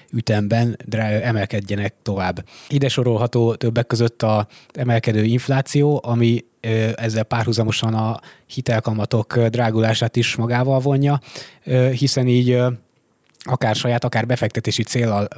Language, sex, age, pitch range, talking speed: Hungarian, male, 20-39, 115-130 Hz, 100 wpm